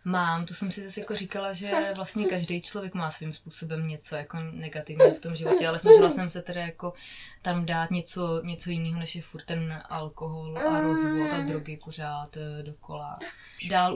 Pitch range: 170-205 Hz